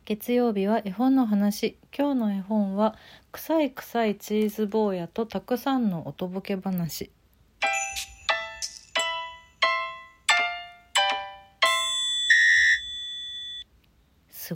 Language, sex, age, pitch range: Japanese, female, 40-59, 145-220 Hz